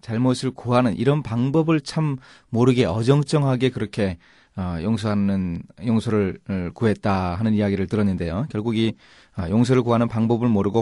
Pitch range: 105-145 Hz